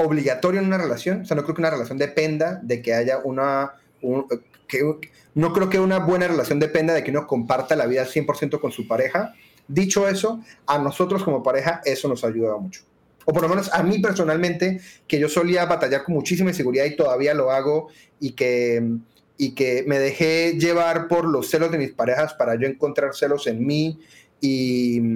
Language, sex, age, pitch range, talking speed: Spanish, male, 30-49, 135-165 Hz, 190 wpm